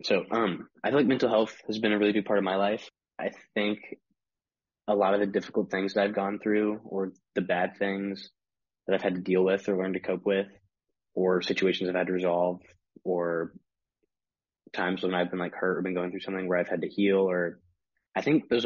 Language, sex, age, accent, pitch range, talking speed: English, male, 20-39, American, 90-105 Hz, 225 wpm